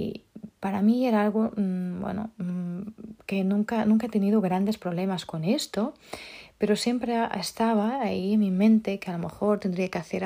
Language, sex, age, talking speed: Spanish, female, 30-49, 165 wpm